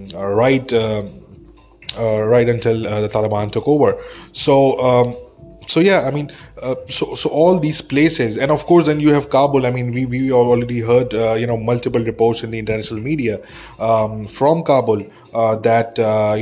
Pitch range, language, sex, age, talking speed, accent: 110-130 Hz, English, male, 20-39, 185 wpm, Indian